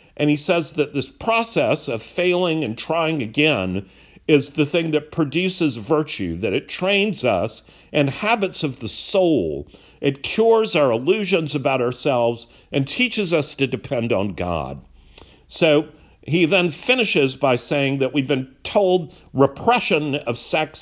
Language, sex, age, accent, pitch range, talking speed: English, male, 50-69, American, 120-165 Hz, 150 wpm